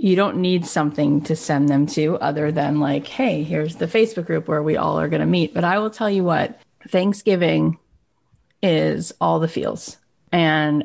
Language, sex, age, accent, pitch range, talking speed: English, female, 30-49, American, 145-170 Hz, 195 wpm